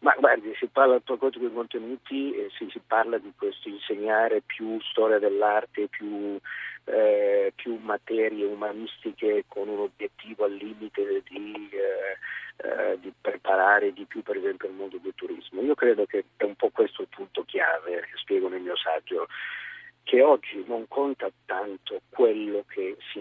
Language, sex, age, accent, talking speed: Italian, male, 50-69, native, 150 wpm